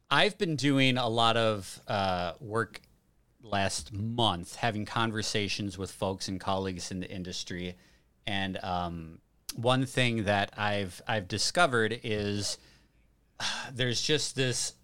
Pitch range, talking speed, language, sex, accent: 95-125 Hz, 130 wpm, English, male, American